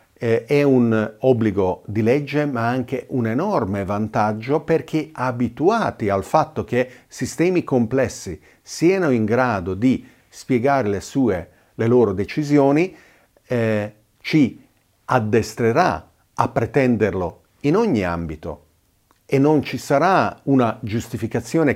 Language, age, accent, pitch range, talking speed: Italian, 50-69, native, 105-130 Hz, 115 wpm